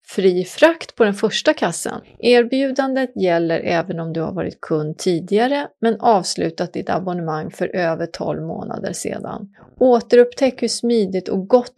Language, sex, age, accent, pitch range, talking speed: Swedish, female, 30-49, native, 180-240 Hz, 150 wpm